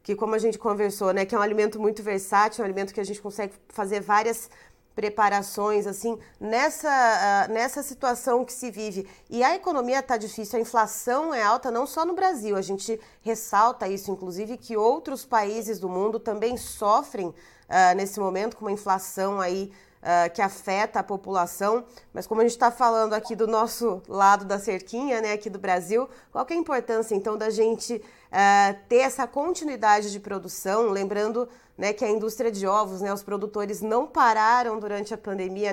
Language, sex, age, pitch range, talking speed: Portuguese, female, 20-39, 195-230 Hz, 185 wpm